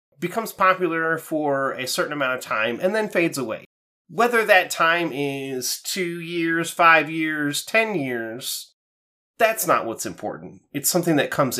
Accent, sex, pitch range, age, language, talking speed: American, male, 145-210 Hz, 30-49, English, 155 wpm